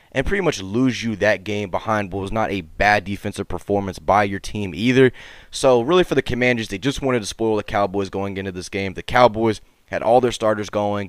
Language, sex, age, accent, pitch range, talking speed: English, male, 20-39, American, 95-120 Hz, 225 wpm